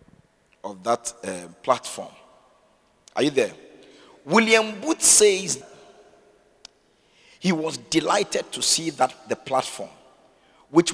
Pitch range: 125-170 Hz